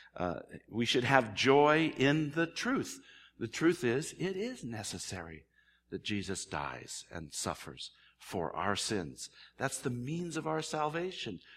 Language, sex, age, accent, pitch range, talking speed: English, male, 60-79, American, 95-155 Hz, 145 wpm